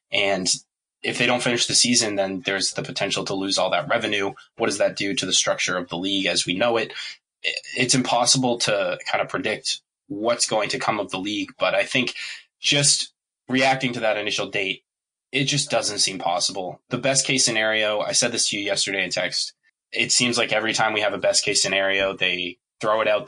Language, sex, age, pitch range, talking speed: English, male, 20-39, 100-130 Hz, 215 wpm